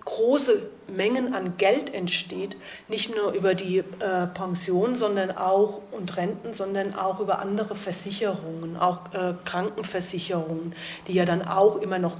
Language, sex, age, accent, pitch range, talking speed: German, female, 40-59, German, 185-215 Hz, 135 wpm